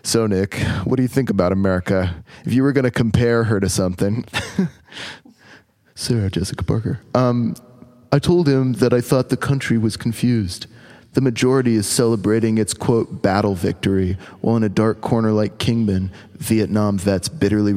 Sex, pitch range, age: male, 100-130 Hz, 30-49